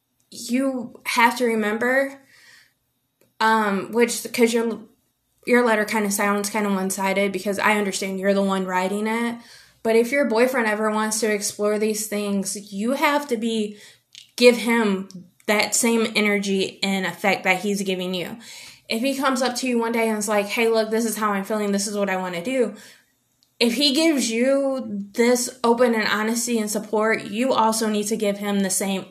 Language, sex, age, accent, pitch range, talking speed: English, female, 20-39, American, 200-235 Hz, 190 wpm